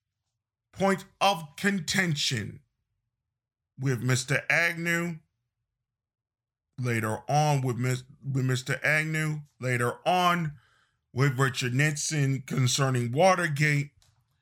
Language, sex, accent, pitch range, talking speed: English, male, American, 125-150 Hz, 80 wpm